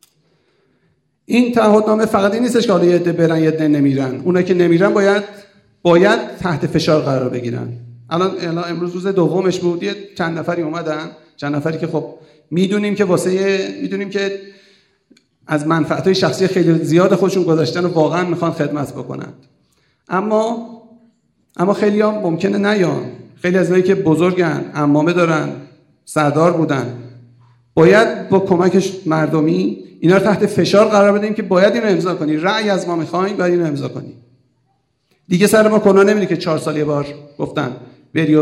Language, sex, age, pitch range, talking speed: Persian, male, 50-69, 155-200 Hz, 165 wpm